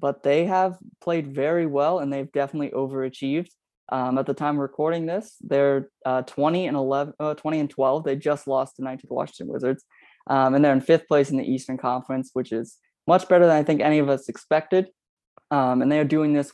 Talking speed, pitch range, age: 220 wpm, 135-150 Hz, 20-39